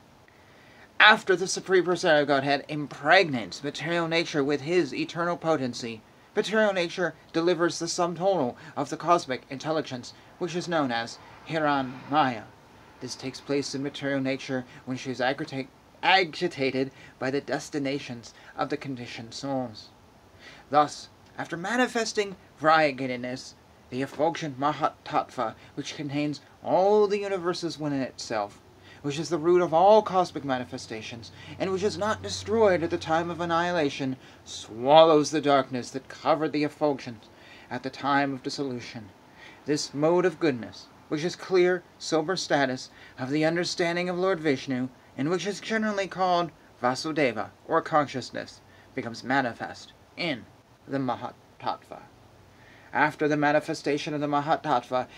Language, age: English, 30-49